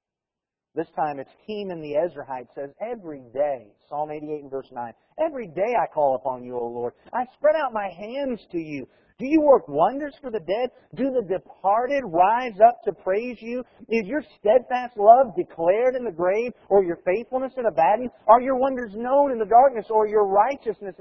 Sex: male